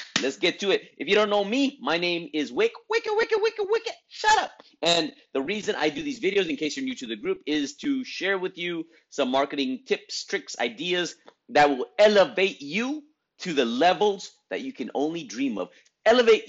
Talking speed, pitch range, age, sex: 210 wpm, 155-260 Hz, 30-49, male